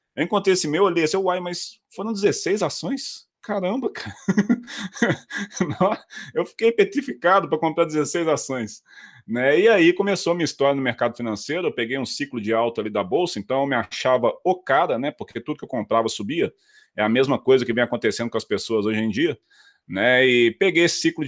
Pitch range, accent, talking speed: 120-175 Hz, Brazilian, 195 wpm